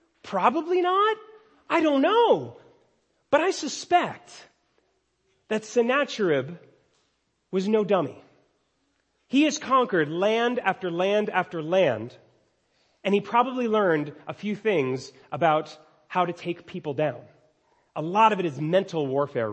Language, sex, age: English, male, 30-49